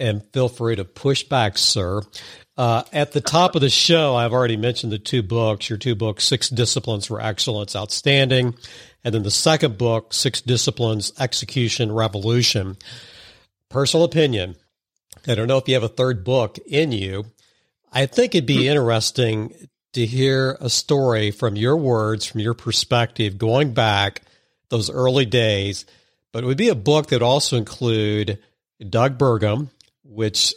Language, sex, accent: English, male, American